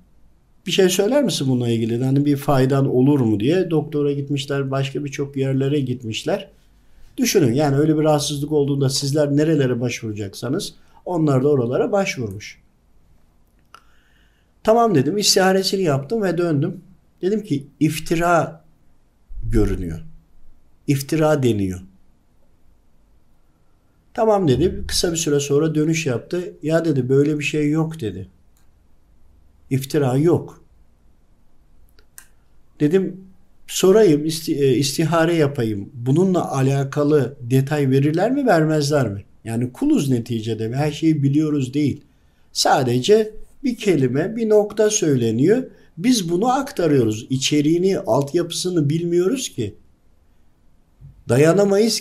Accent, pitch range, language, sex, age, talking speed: native, 110-165 Hz, Turkish, male, 50-69, 105 wpm